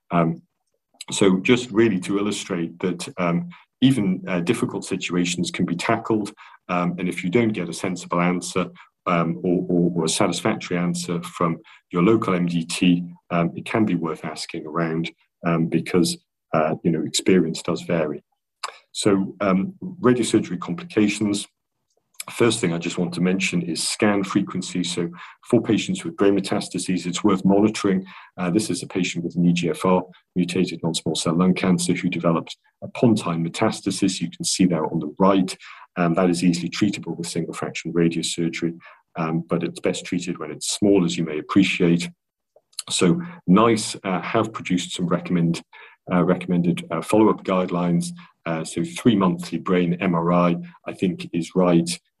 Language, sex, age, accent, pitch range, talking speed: English, male, 40-59, British, 85-100 Hz, 160 wpm